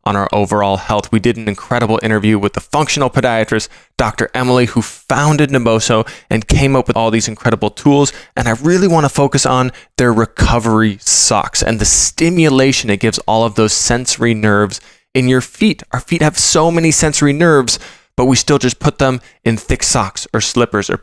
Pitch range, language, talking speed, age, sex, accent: 105-135 Hz, English, 195 wpm, 20-39, male, American